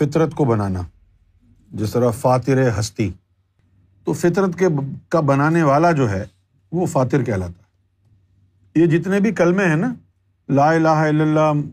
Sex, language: male, Urdu